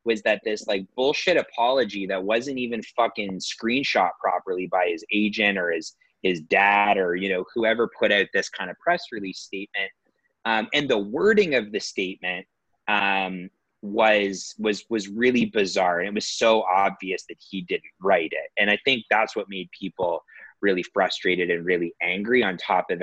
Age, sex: 20-39, male